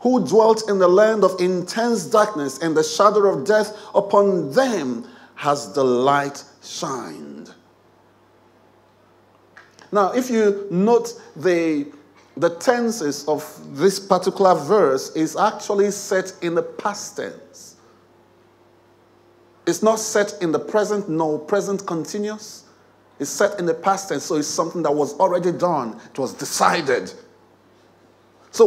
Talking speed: 130 wpm